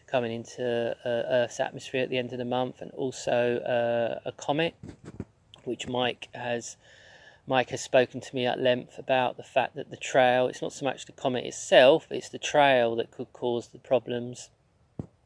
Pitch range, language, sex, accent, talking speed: 120-140 Hz, English, male, British, 185 wpm